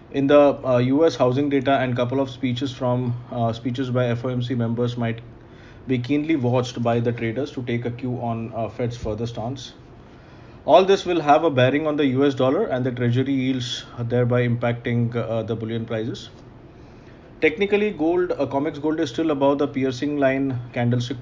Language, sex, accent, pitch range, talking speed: English, male, Indian, 115-135 Hz, 180 wpm